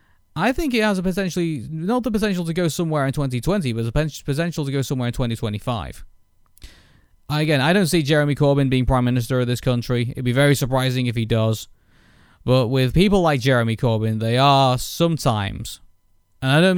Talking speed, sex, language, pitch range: 200 wpm, male, English, 110-150 Hz